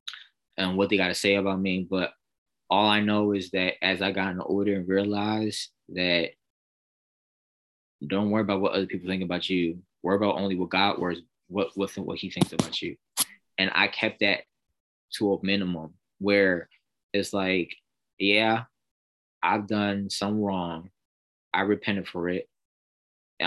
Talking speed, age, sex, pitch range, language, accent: 165 wpm, 20-39, male, 90-105 Hz, English, American